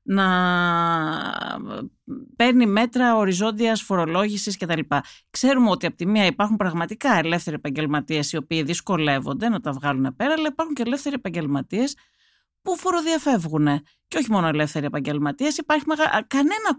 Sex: female